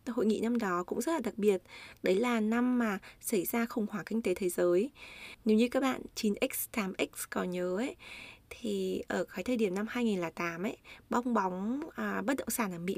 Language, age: Vietnamese, 20-39